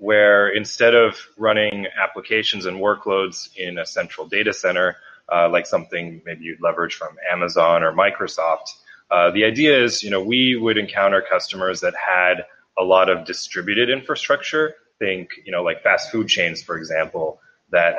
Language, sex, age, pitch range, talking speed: English, male, 20-39, 90-115 Hz, 165 wpm